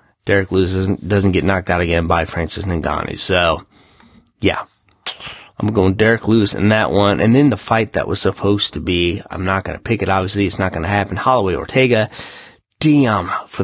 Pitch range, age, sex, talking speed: 95-110 Hz, 30-49, male, 200 wpm